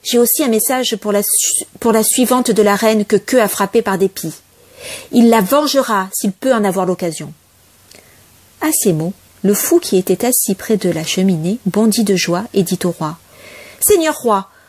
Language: French